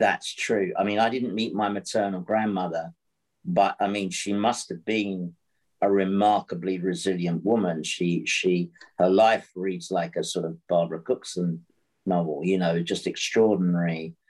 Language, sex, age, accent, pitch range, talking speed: English, male, 50-69, British, 90-105 Hz, 155 wpm